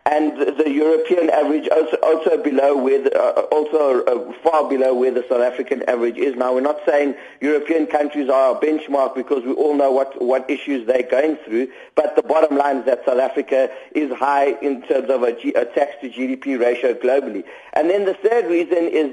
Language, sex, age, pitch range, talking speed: English, male, 50-69, 140-190 Hz, 205 wpm